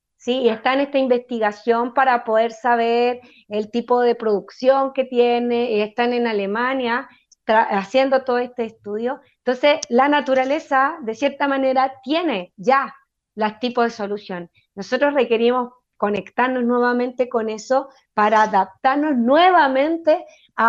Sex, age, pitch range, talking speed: female, 30-49, 215-260 Hz, 130 wpm